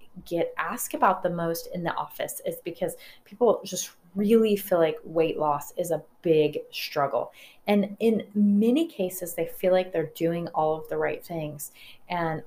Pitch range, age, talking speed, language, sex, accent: 165-215 Hz, 30-49, 175 wpm, English, female, American